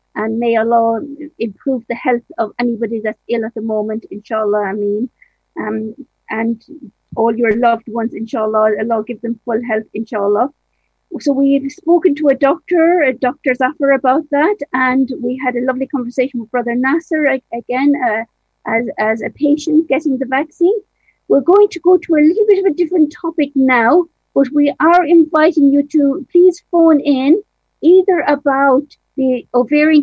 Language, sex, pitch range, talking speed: English, female, 240-310 Hz, 170 wpm